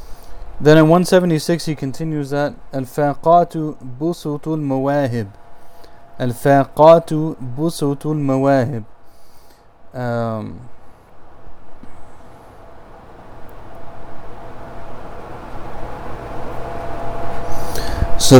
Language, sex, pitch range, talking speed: English, male, 120-145 Hz, 50 wpm